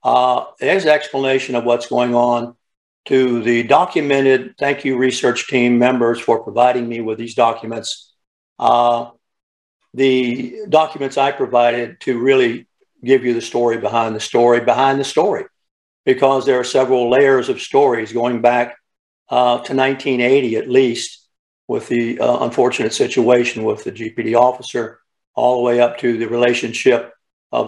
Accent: American